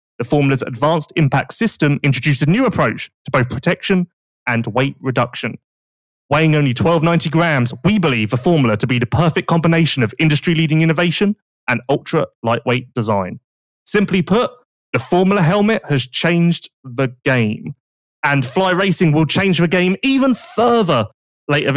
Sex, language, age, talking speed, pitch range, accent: male, English, 30-49, 145 wpm, 130-170 Hz, British